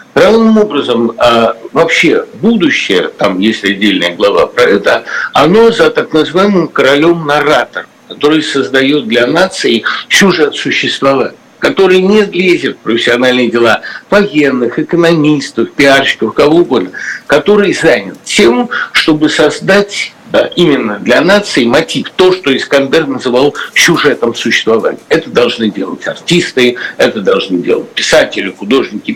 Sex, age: male, 60-79